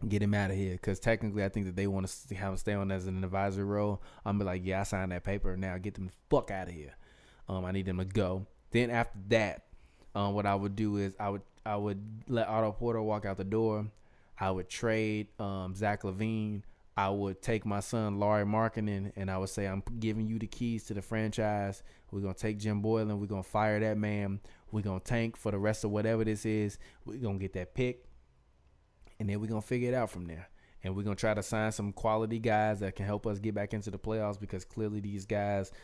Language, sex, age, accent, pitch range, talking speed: English, male, 20-39, American, 100-110 Hz, 245 wpm